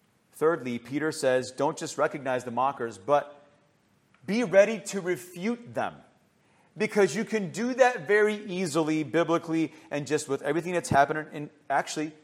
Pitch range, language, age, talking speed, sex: 155-225 Hz, English, 30-49, 145 wpm, male